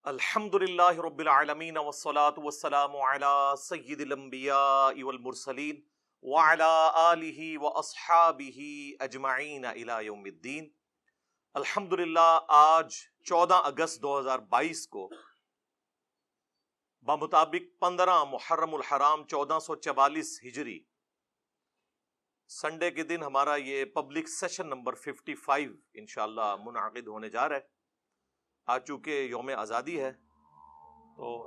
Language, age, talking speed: Urdu, 40-59, 75 wpm